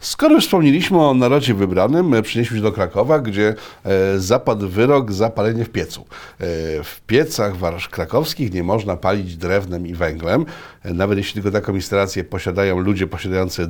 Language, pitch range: Polish, 90-110 Hz